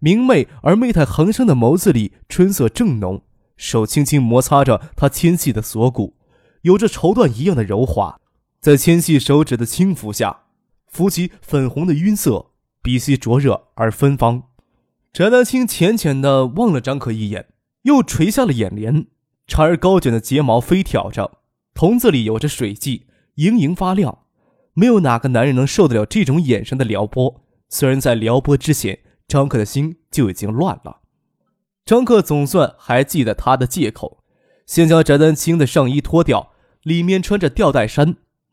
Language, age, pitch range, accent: Chinese, 20-39, 125-180 Hz, native